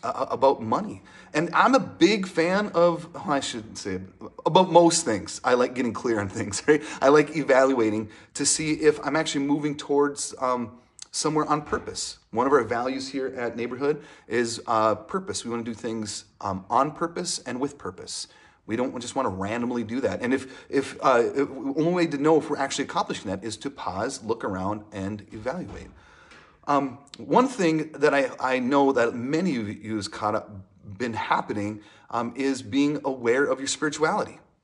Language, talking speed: English, 190 wpm